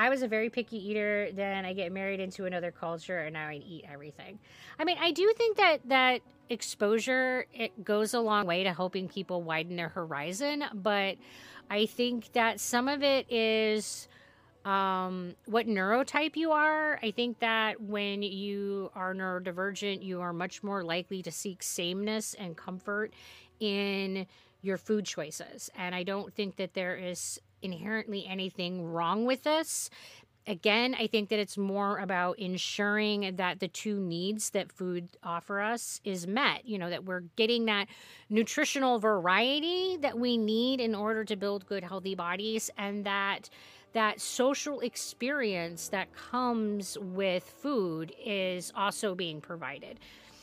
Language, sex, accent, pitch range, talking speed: English, female, American, 185-230 Hz, 155 wpm